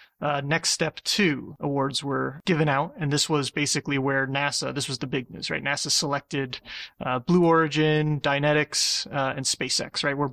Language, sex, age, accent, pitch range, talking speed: English, male, 30-49, American, 140-160 Hz, 180 wpm